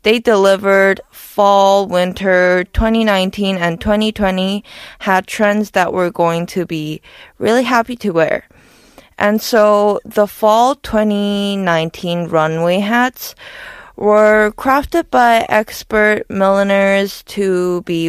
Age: 20-39